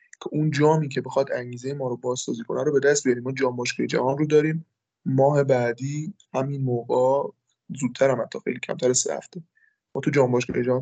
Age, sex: 20-39, male